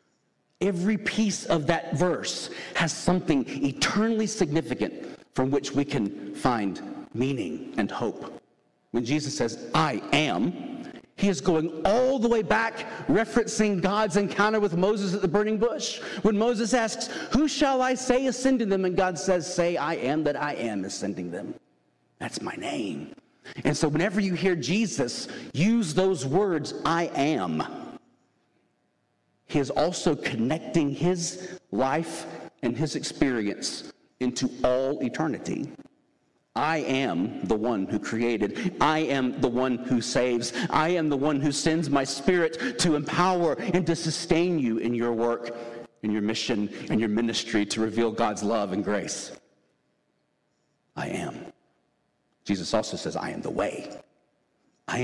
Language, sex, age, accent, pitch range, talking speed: English, male, 50-69, American, 120-200 Hz, 145 wpm